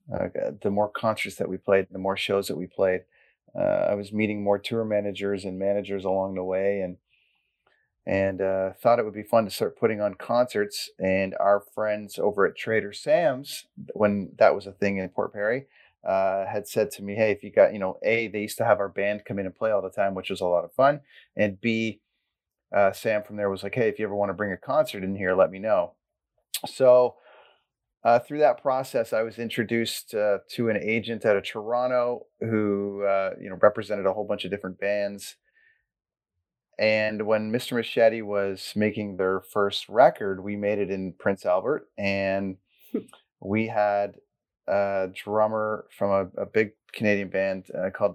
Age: 30-49